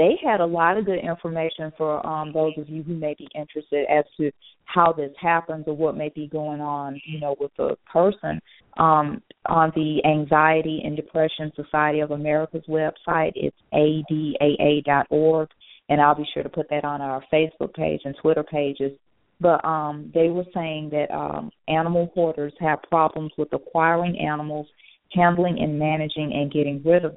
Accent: American